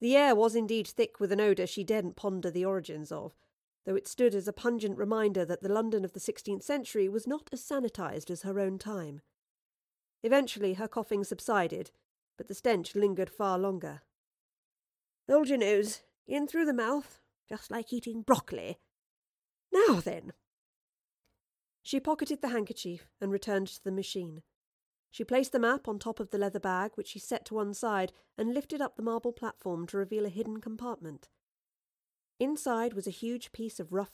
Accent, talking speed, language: British, 180 wpm, English